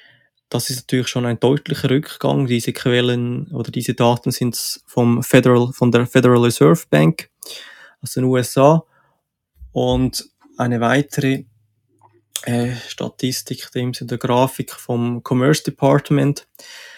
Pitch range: 120-145 Hz